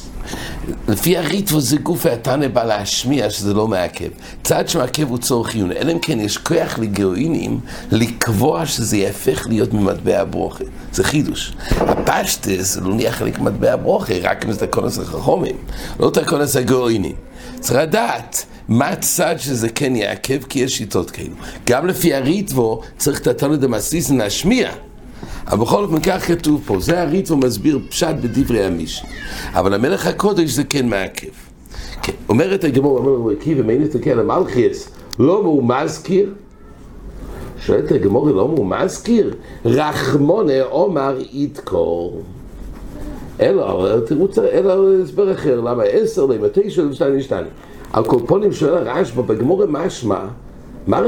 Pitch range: 120-185 Hz